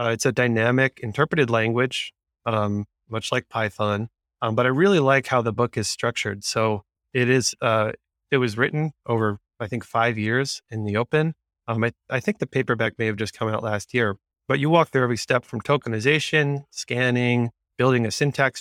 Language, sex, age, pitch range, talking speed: English, male, 20-39, 110-130 Hz, 195 wpm